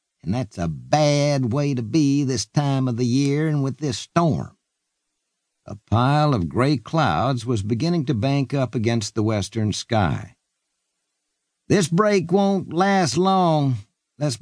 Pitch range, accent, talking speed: 115-145 Hz, American, 150 wpm